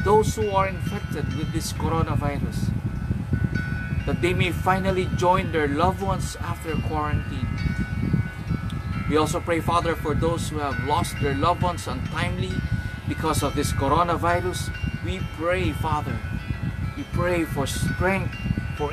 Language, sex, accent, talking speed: English, male, Filipino, 135 wpm